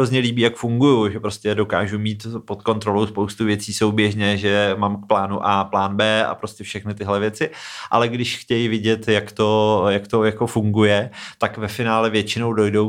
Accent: native